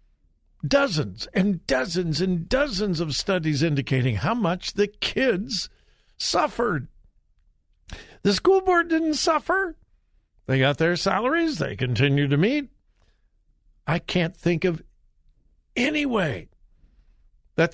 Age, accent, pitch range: 60-79, American, 135-215 Hz